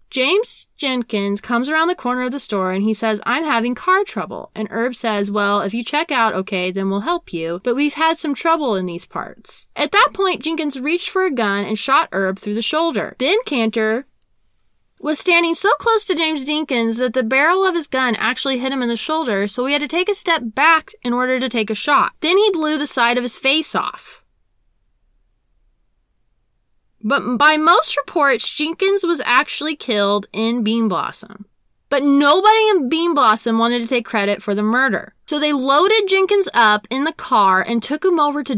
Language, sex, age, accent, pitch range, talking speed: English, female, 10-29, American, 215-300 Hz, 205 wpm